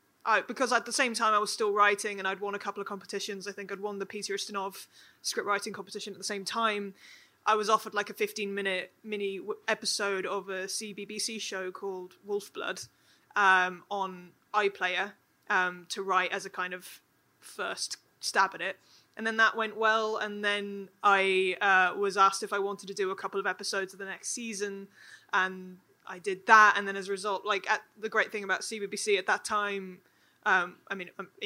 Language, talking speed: English, 195 wpm